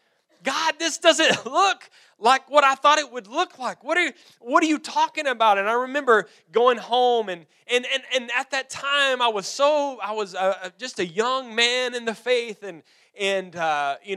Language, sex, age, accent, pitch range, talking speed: English, male, 20-39, American, 195-270 Hz, 210 wpm